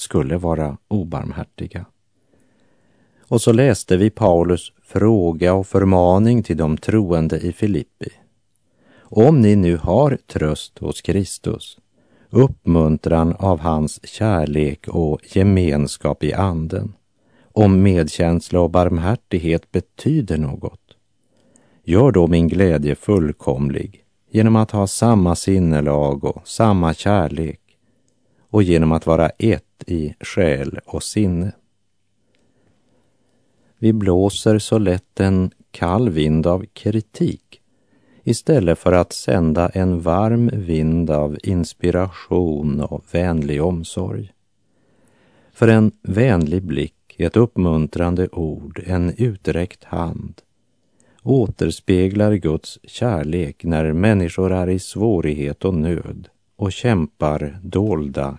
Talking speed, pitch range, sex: 105 wpm, 80-105 Hz, male